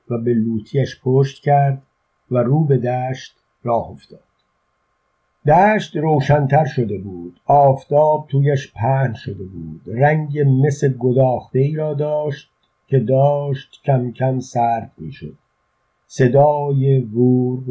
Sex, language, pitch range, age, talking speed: male, Persian, 120-140 Hz, 50-69, 110 wpm